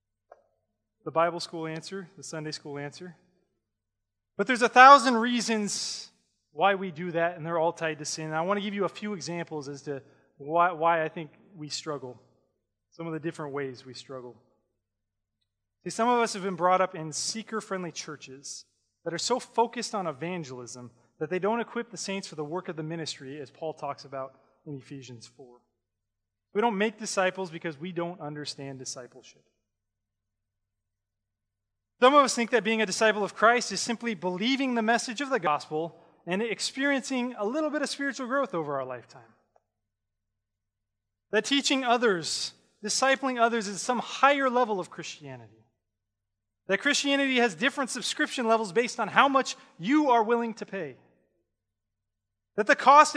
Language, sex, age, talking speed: English, male, 20-39, 170 wpm